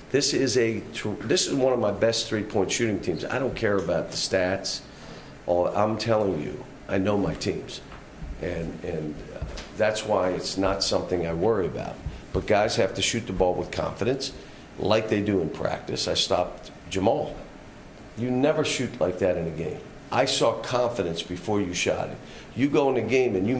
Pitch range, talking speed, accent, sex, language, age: 90-115 Hz, 195 wpm, American, male, English, 50-69